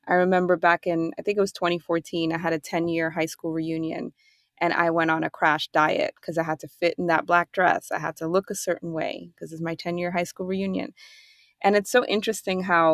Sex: female